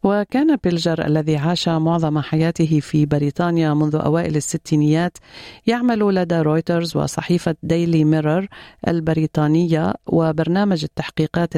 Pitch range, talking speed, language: 160-185 Hz, 105 wpm, Arabic